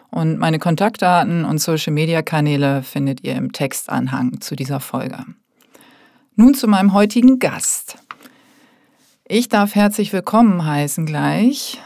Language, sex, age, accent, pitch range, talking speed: German, female, 40-59, German, 160-220 Hz, 115 wpm